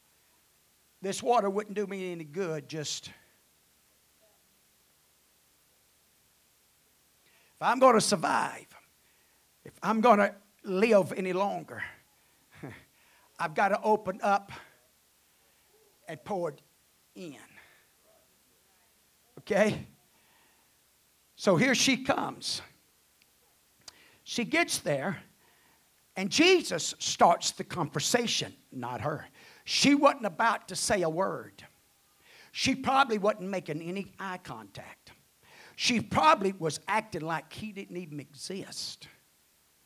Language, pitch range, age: English, 130-215 Hz, 50-69